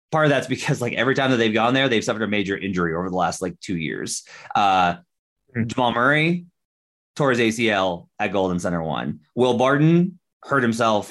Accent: American